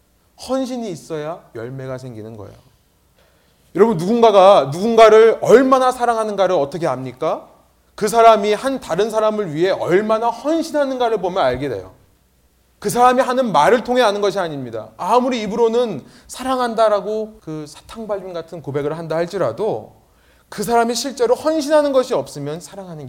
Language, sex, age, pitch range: Korean, male, 30-49, 150-230 Hz